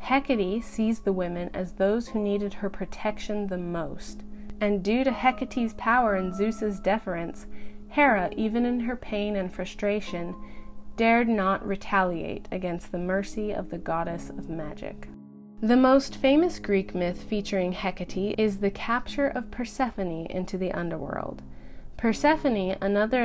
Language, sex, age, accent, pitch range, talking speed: English, female, 30-49, American, 180-225 Hz, 140 wpm